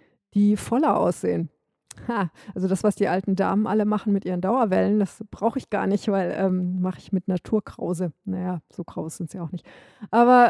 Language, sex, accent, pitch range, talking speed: English, female, German, 180-215 Hz, 195 wpm